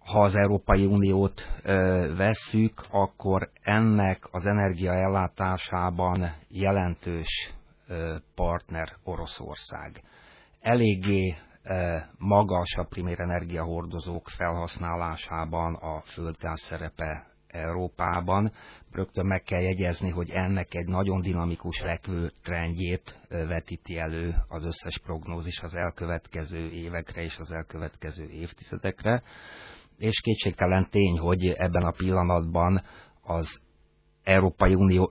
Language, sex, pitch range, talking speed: Hungarian, male, 80-95 Hz, 90 wpm